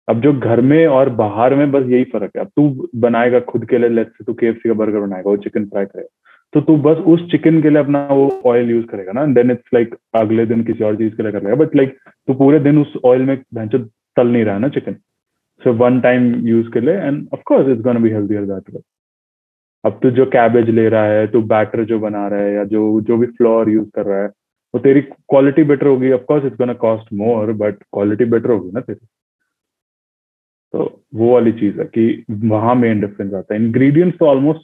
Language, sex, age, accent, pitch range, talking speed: Hindi, male, 20-39, native, 105-125 Hz, 145 wpm